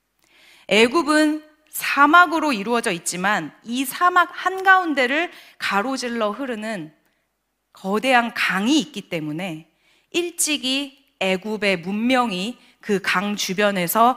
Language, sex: Korean, female